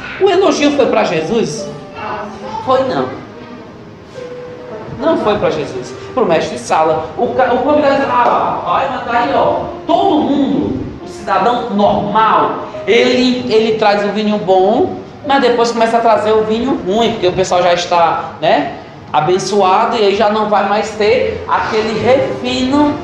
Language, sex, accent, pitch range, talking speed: Portuguese, male, Brazilian, 215-315 Hz, 155 wpm